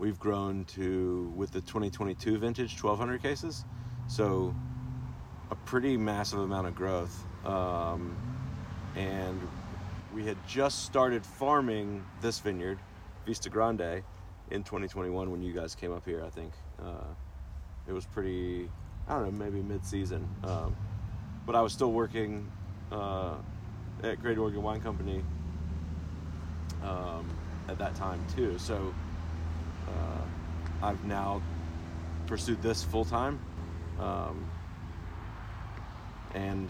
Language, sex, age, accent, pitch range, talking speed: English, male, 30-49, American, 85-105 Hz, 120 wpm